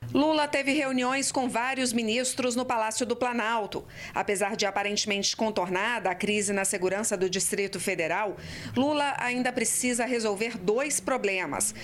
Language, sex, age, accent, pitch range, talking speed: Portuguese, female, 40-59, Brazilian, 195-240 Hz, 135 wpm